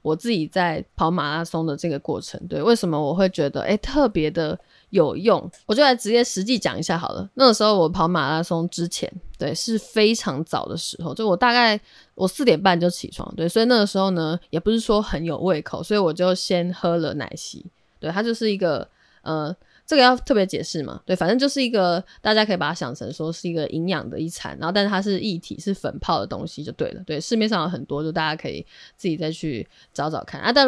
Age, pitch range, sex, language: 20-39, 160-205 Hz, female, Chinese